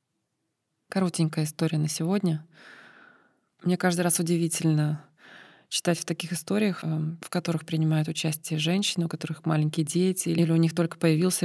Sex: female